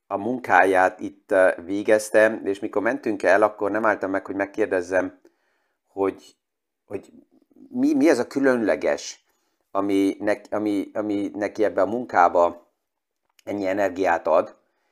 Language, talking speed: Hungarian, 120 wpm